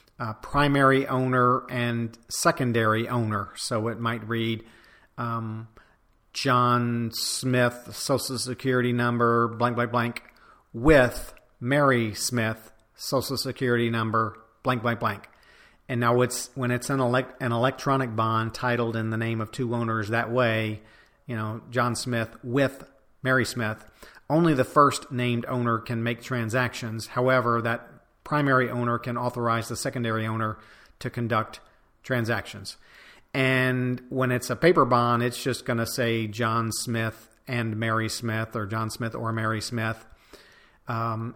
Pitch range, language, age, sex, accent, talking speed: 115-125 Hz, English, 40-59, male, American, 140 wpm